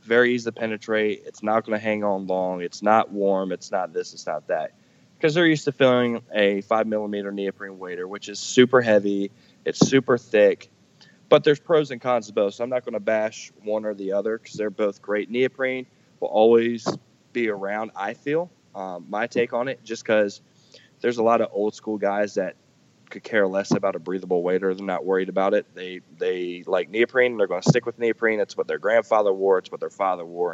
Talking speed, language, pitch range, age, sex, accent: 220 wpm, English, 100-130 Hz, 20-39, male, American